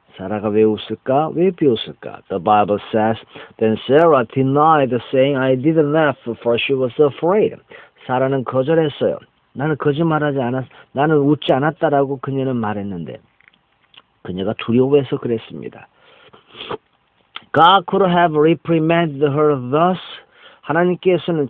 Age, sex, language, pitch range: 50-69, male, Korean, 125-155 Hz